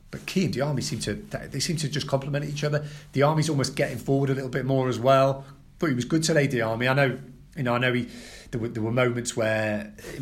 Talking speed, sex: 270 wpm, male